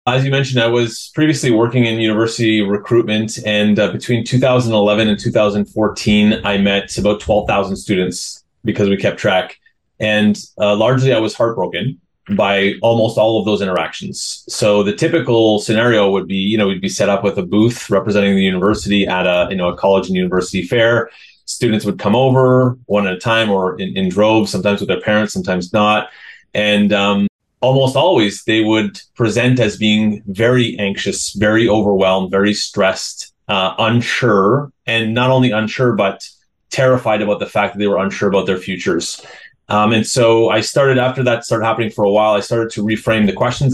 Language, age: English, 30-49